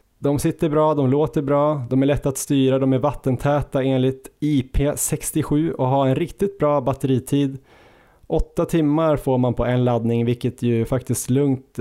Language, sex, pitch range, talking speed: Swedish, male, 115-140 Hz, 170 wpm